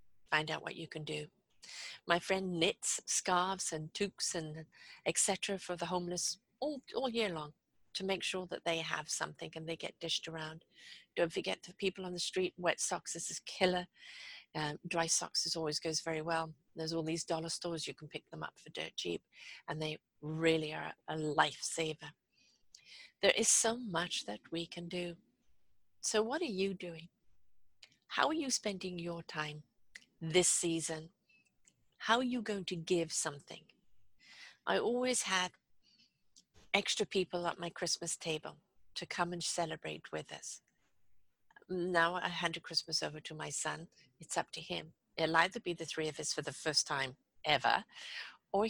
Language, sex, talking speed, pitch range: English, female, 175 wpm, 155-185 Hz